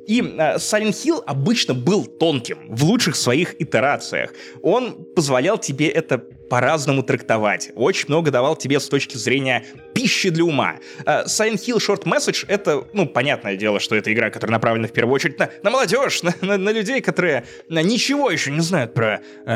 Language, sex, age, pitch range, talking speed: Russian, male, 20-39, 130-205 Hz, 180 wpm